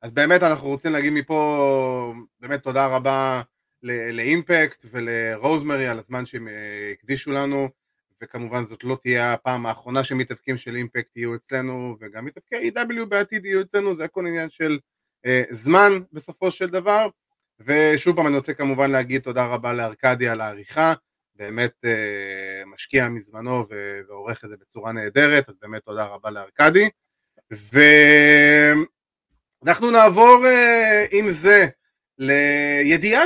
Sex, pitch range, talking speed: male, 125-190 Hz, 135 wpm